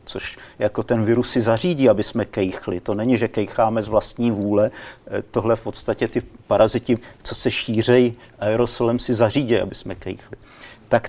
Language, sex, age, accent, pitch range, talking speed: Czech, male, 50-69, native, 115-135 Hz, 170 wpm